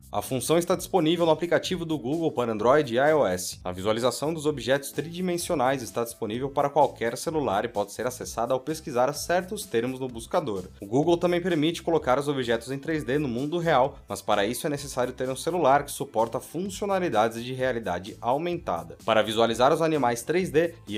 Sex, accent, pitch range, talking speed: male, Brazilian, 115-165 Hz, 185 wpm